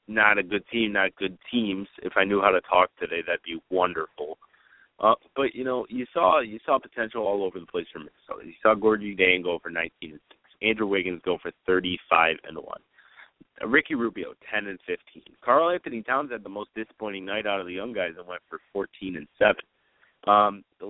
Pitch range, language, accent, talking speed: 95-120 Hz, English, American, 220 wpm